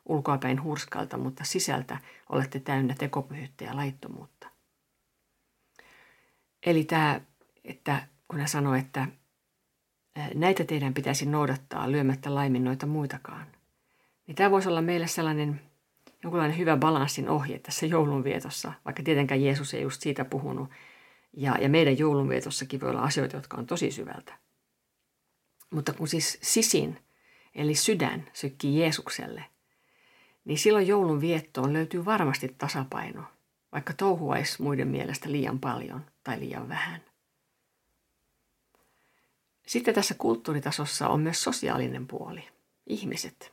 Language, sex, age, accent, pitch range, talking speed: Finnish, female, 50-69, native, 135-165 Hz, 115 wpm